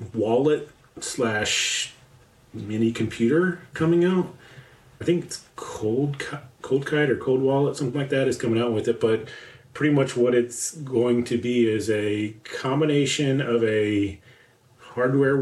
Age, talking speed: 30-49, 145 wpm